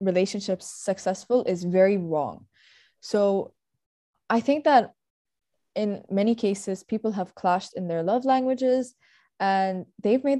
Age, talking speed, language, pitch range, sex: 20-39, 125 wpm, English, 190-230 Hz, female